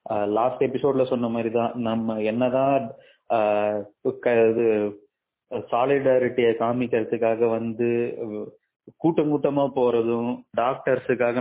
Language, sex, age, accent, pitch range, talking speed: Tamil, male, 30-49, native, 115-150 Hz, 65 wpm